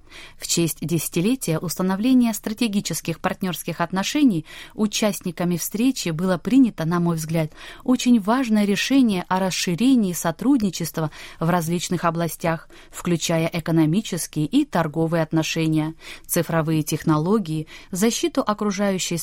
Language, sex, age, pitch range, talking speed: Russian, female, 20-39, 160-220 Hz, 100 wpm